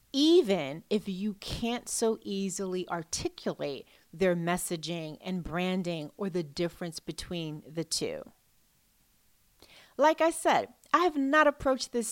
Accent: American